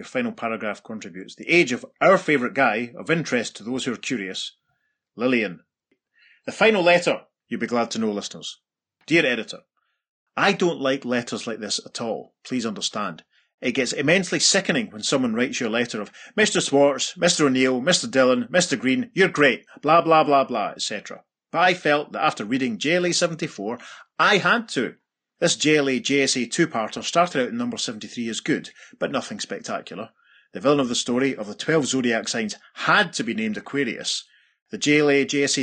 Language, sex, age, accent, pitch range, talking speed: English, male, 30-49, British, 130-175 Hz, 175 wpm